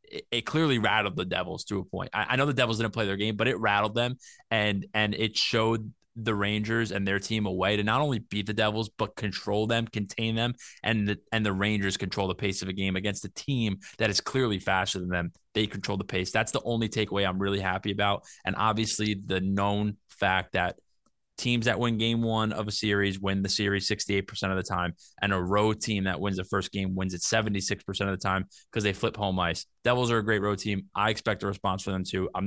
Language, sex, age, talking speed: English, male, 20-39, 240 wpm